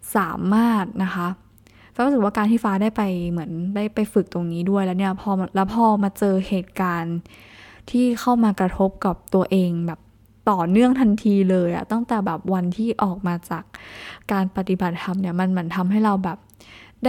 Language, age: Thai, 10-29